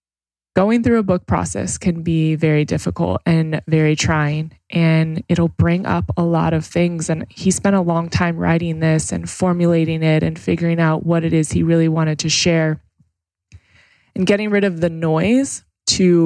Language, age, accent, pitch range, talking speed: English, 20-39, American, 155-170 Hz, 180 wpm